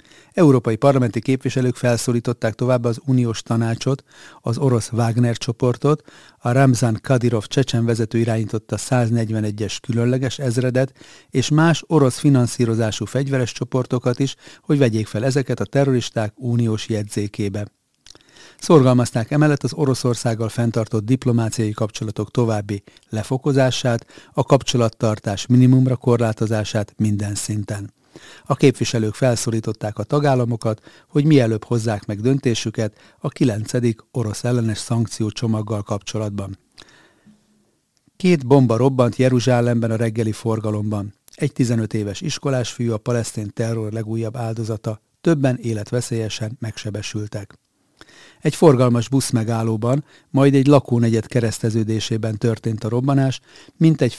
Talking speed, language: 110 wpm, Hungarian